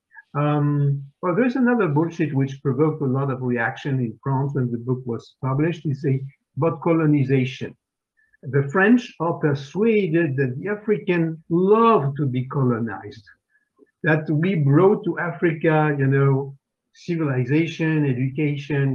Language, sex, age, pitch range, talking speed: Polish, male, 50-69, 130-165 Hz, 135 wpm